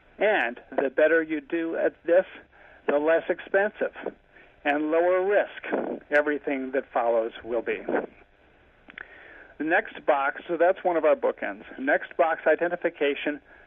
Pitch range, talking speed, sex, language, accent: 135-175 Hz, 130 wpm, male, English, American